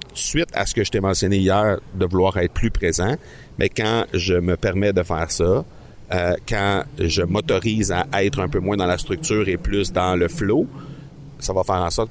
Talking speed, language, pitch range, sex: 215 wpm, French, 90-110 Hz, male